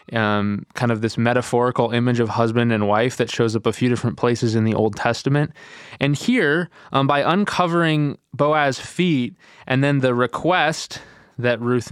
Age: 20-39